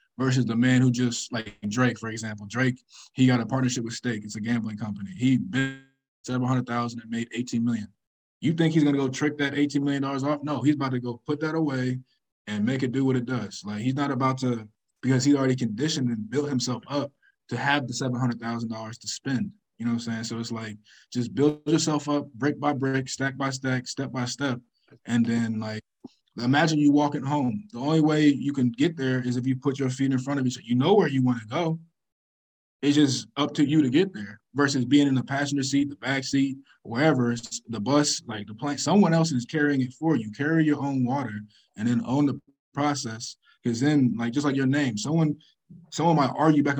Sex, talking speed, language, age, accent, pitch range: male, 225 wpm, English, 20-39, American, 120-145 Hz